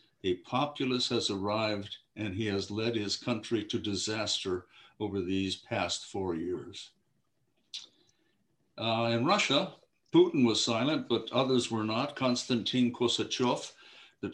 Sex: male